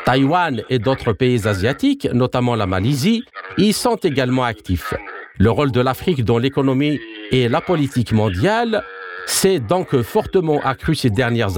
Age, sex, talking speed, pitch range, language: 50-69, male, 145 wpm, 125-185 Hz, French